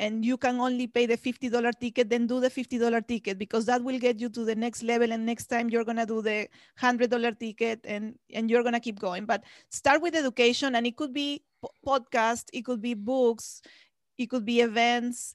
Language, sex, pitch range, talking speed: English, female, 225-250 Hz, 220 wpm